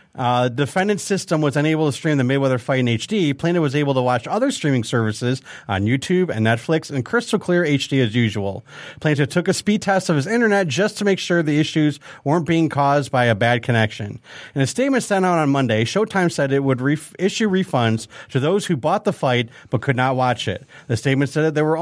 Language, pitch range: English, 130-180 Hz